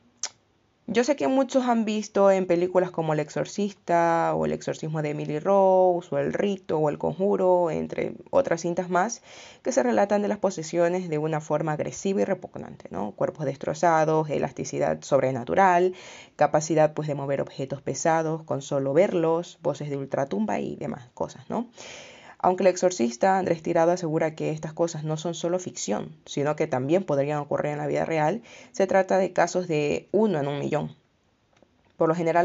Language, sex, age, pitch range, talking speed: Spanish, female, 20-39, 150-185 Hz, 175 wpm